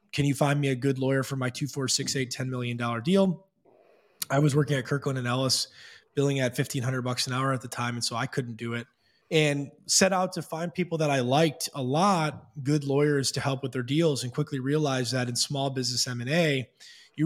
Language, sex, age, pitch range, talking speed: English, male, 20-39, 125-145 Hz, 230 wpm